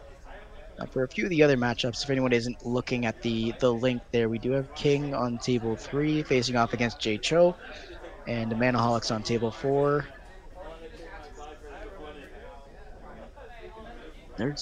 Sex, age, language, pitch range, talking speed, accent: male, 20-39, English, 120-145 Hz, 145 wpm, American